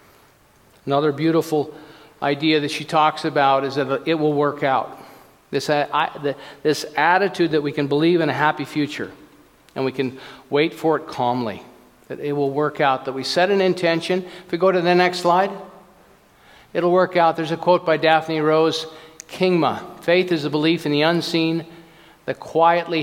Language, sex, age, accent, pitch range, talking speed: English, male, 50-69, American, 140-170 Hz, 180 wpm